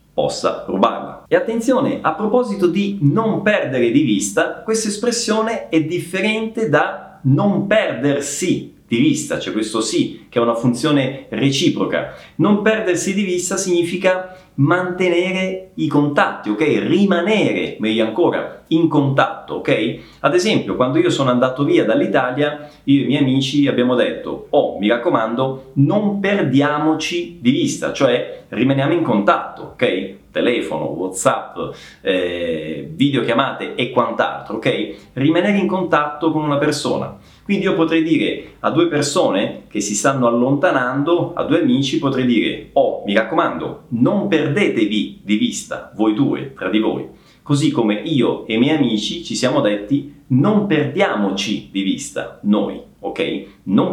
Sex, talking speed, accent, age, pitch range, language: male, 140 wpm, native, 30-49, 135-190 Hz, Italian